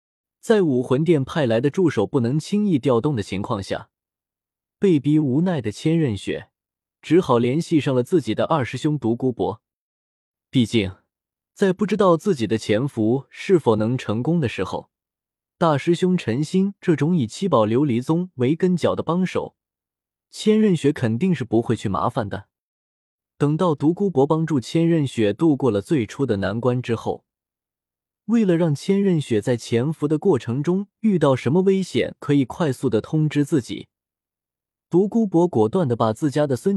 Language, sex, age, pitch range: Chinese, male, 20-39, 110-165 Hz